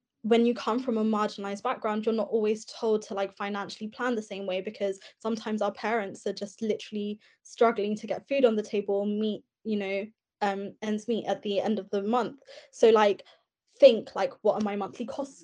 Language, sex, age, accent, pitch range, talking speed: English, female, 10-29, British, 200-225 Hz, 205 wpm